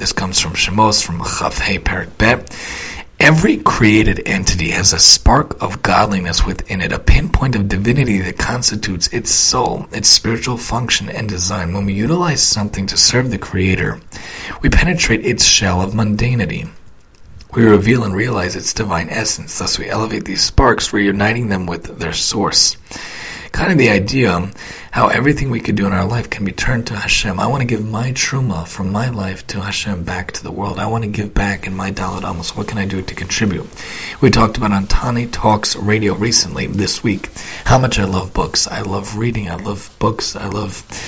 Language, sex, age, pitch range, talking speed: English, male, 40-59, 95-110 Hz, 195 wpm